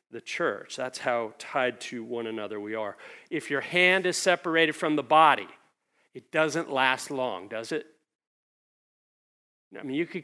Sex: male